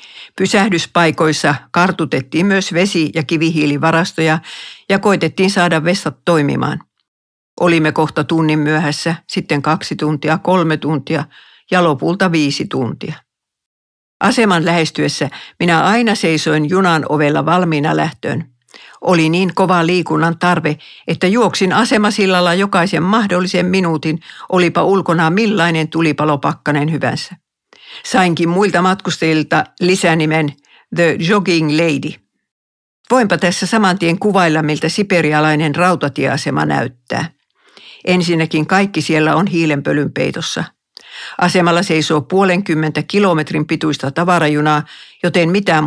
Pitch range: 155-185 Hz